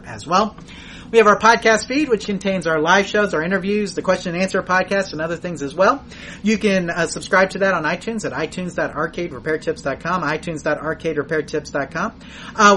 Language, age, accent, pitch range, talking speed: English, 30-49, American, 155-195 Hz, 170 wpm